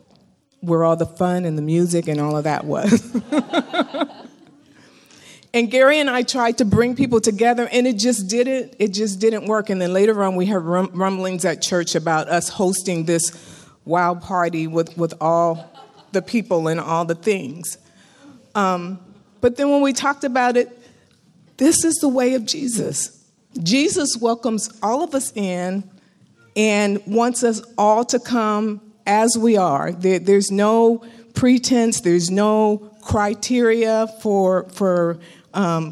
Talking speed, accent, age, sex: 155 wpm, American, 50-69, female